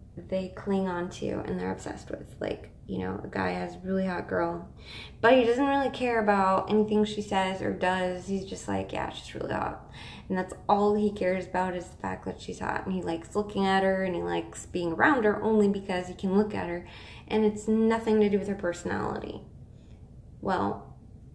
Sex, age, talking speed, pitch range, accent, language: female, 20-39, 215 wpm, 165-200 Hz, American, English